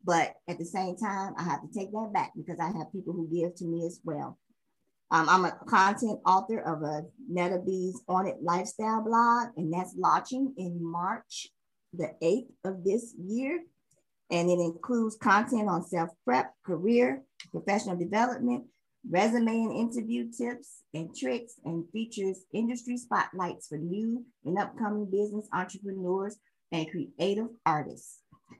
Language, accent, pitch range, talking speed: English, American, 175-235 Hz, 150 wpm